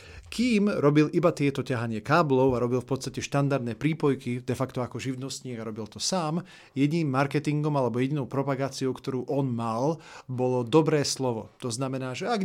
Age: 40-59